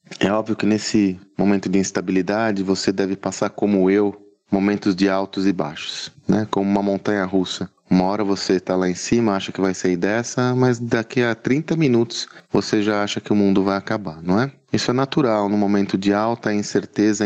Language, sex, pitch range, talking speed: Portuguese, male, 95-110 Hz, 200 wpm